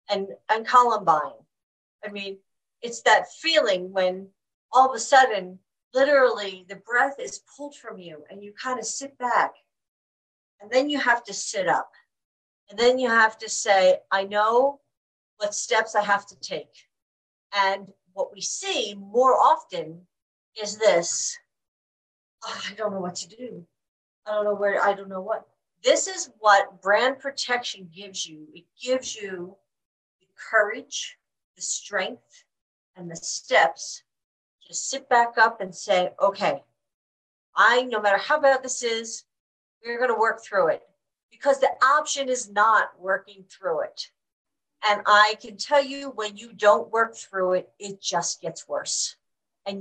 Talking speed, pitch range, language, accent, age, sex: 155 wpm, 195-255 Hz, English, American, 50-69, female